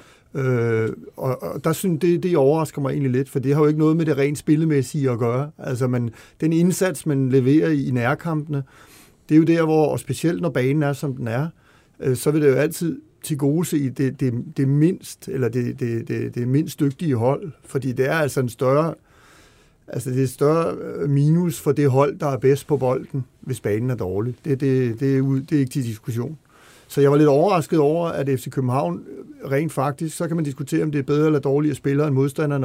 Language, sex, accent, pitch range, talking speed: Danish, male, native, 125-150 Hz, 230 wpm